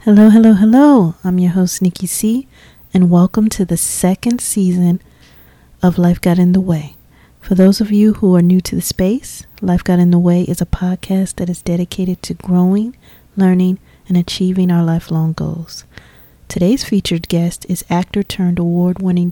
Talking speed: 170 wpm